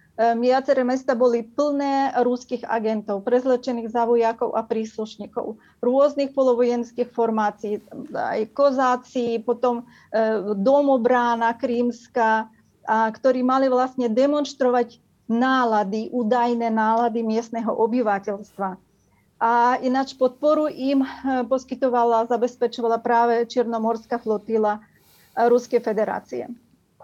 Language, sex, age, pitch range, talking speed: Slovak, female, 30-49, 230-260 Hz, 85 wpm